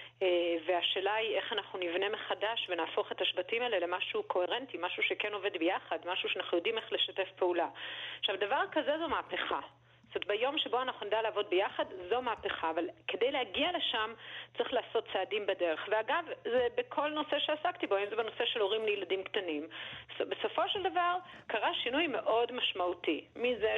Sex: female